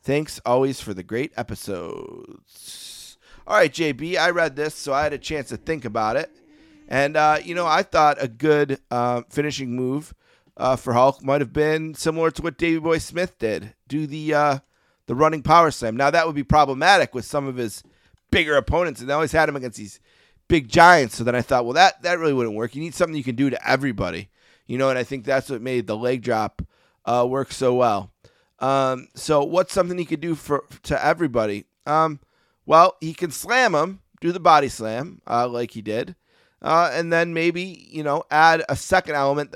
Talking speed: 210 wpm